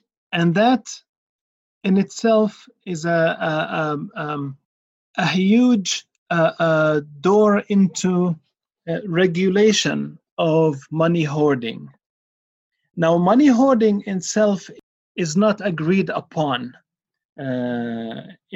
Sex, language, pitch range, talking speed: male, English, 145-185 Hz, 90 wpm